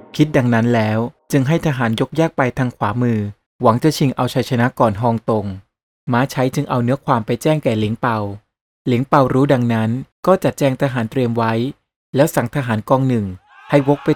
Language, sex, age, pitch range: Thai, male, 20-39, 115-145 Hz